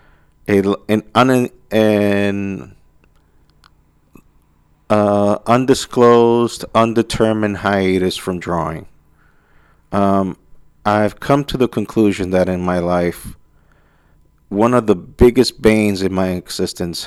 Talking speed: 90 wpm